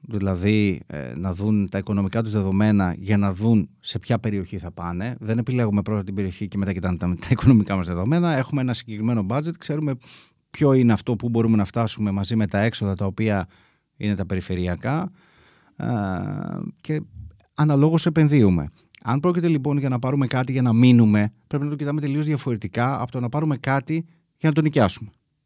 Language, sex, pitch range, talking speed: Greek, male, 105-145 Hz, 185 wpm